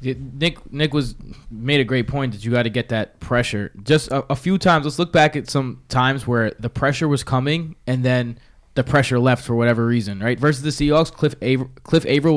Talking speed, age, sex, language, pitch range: 225 wpm, 20-39, male, English, 120-145 Hz